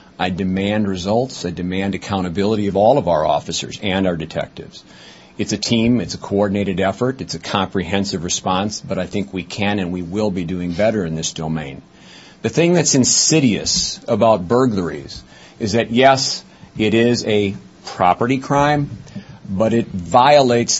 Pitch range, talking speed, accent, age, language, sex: 95-115 Hz, 160 wpm, American, 50-69, English, male